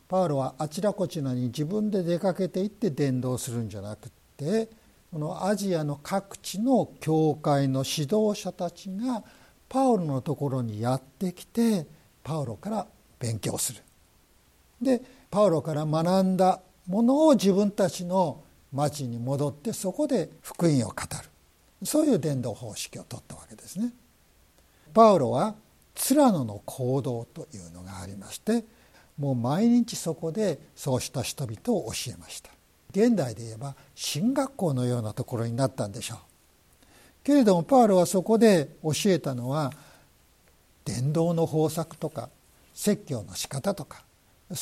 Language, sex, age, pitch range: Japanese, male, 60-79, 125-195 Hz